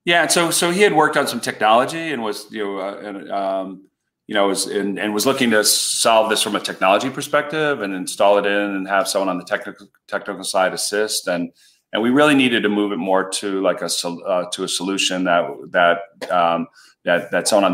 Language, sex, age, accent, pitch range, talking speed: English, male, 40-59, American, 95-120 Hz, 230 wpm